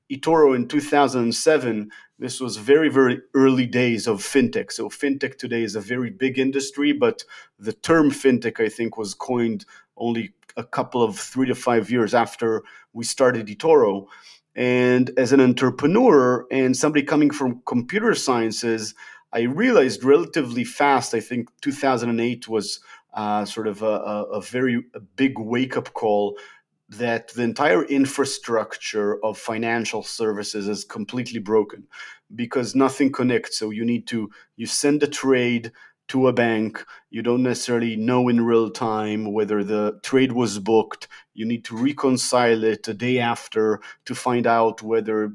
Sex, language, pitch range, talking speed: male, English, 110-130 Hz, 150 wpm